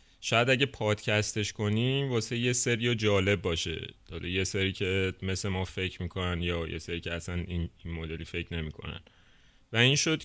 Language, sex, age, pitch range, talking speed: Persian, male, 30-49, 90-115 Hz, 170 wpm